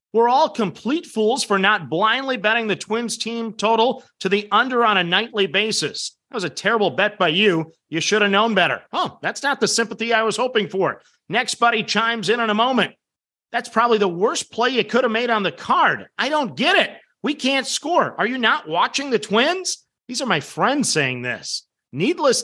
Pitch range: 180-235 Hz